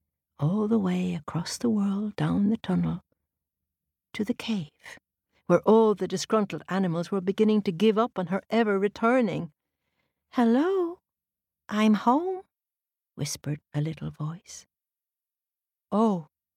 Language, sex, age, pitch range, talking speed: English, female, 60-79, 145-240 Hz, 125 wpm